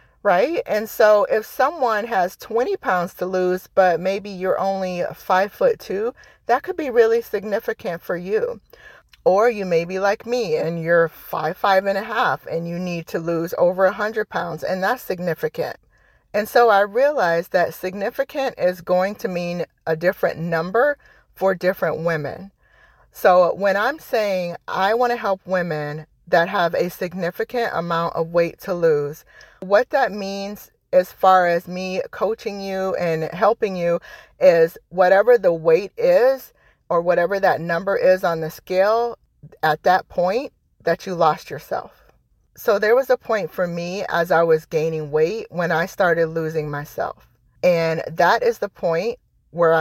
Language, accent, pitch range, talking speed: English, American, 170-235 Hz, 165 wpm